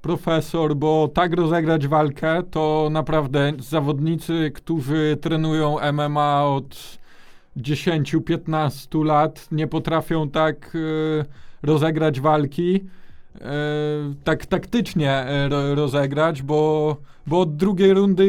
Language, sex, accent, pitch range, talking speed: Polish, male, native, 150-180 Hz, 90 wpm